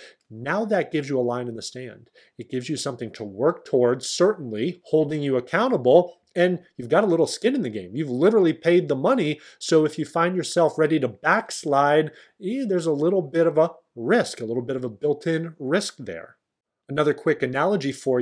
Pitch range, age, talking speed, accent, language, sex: 120-165 Hz, 30-49, 205 wpm, American, English, male